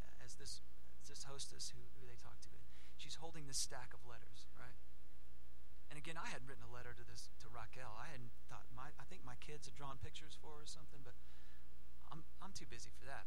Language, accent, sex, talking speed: English, American, male, 215 wpm